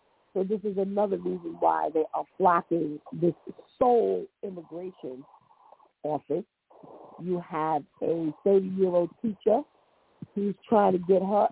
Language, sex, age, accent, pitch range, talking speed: English, female, 50-69, American, 155-200 Hz, 120 wpm